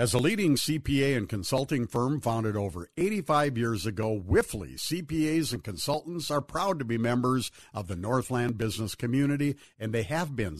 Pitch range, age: 115-160 Hz, 50-69